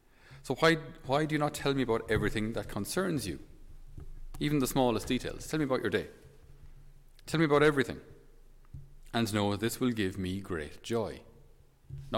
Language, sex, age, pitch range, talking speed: English, male, 30-49, 90-130 Hz, 170 wpm